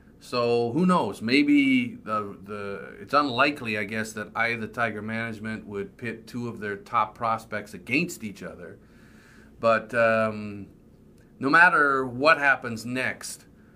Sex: male